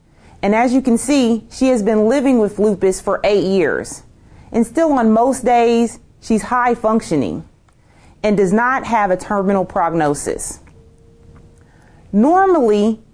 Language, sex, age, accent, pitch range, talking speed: English, female, 30-49, American, 180-230 Hz, 135 wpm